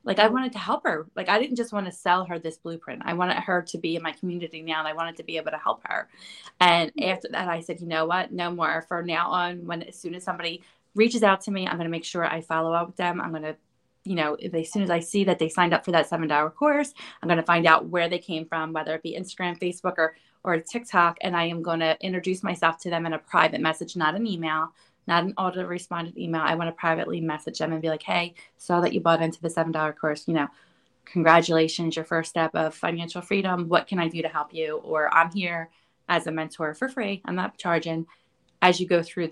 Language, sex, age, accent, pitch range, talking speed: English, female, 20-39, American, 160-185 Hz, 265 wpm